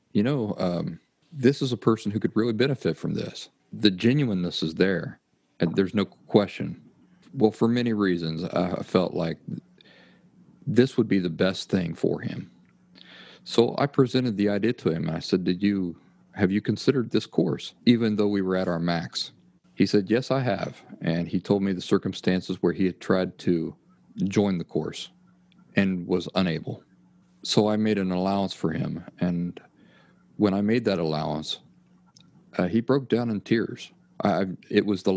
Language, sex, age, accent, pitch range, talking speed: English, male, 40-59, American, 95-125 Hz, 175 wpm